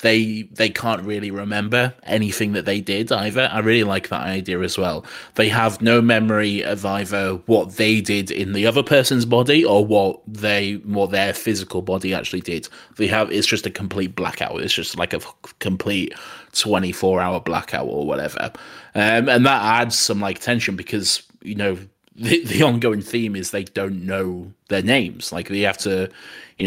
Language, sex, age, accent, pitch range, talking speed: English, male, 20-39, British, 95-115 Hz, 185 wpm